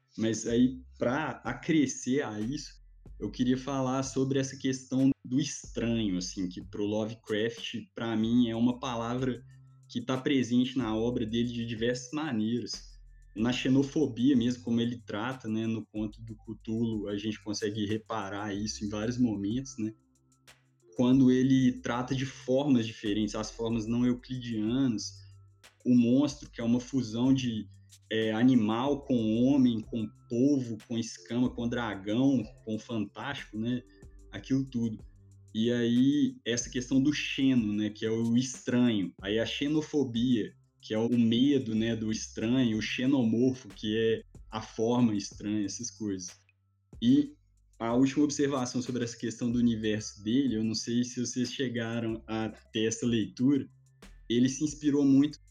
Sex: male